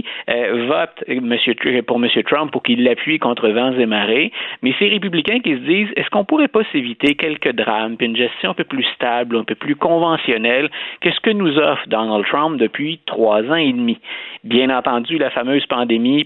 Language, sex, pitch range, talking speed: French, male, 115-165 Hz, 190 wpm